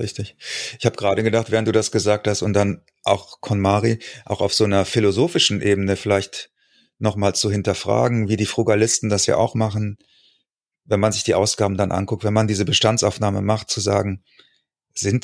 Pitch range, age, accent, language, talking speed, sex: 100-120 Hz, 30-49, German, German, 180 wpm, male